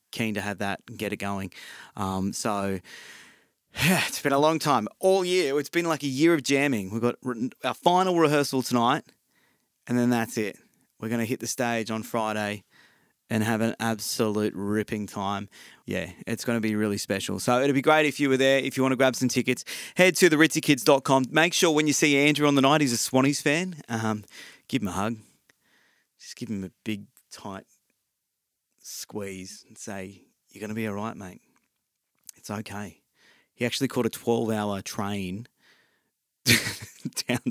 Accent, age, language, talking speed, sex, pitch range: Australian, 20-39, English, 190 wpm, male, 105-145 Hz